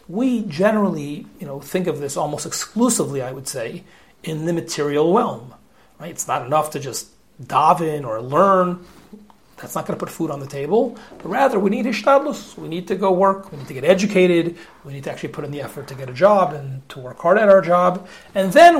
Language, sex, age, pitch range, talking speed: English, male, 40-59, 150-195 Hz, 225 wpm